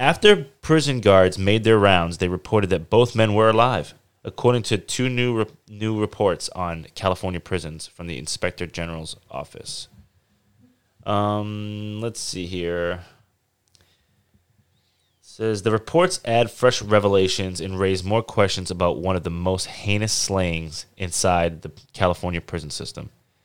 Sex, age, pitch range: male, 20-39, 90-110 Hz